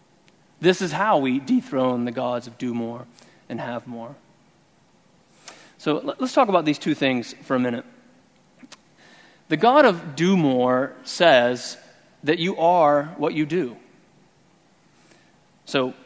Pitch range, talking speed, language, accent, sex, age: 145-185 Hz, 135 wpm, English, American, male, 30-49